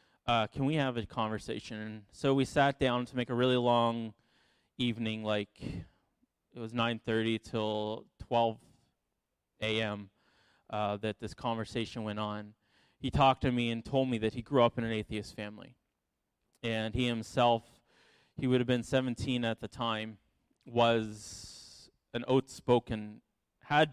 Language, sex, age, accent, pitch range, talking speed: English, male, 20-39, American, 110-125 Hz, 150 wpm